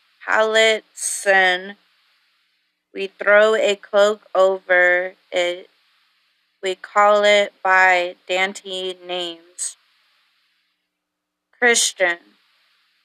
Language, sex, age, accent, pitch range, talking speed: English, female, 20-39, American, 180-210 Hz, 70 wpm